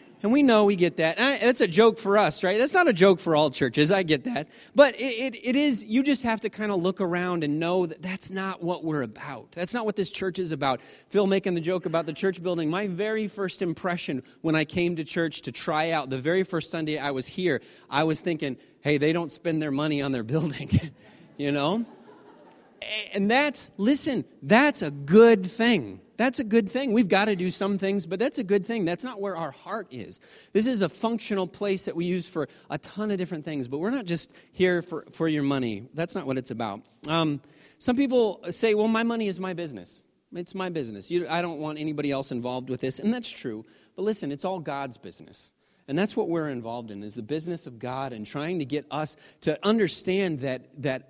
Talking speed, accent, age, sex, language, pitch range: 230 wpm, American, 30-49, male, English, 150-210 Hz